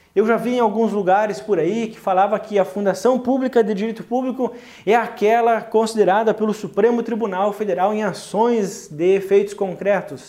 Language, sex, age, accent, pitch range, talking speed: Portuguese, male, 20-39, Brazilian, 170-255 Hz, 170 wpm